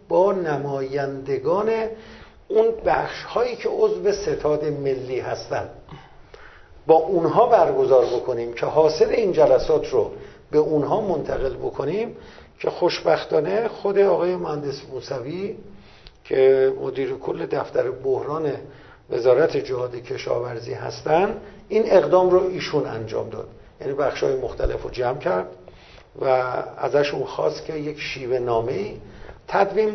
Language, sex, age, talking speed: Persian, male, 50-69, 120 wpm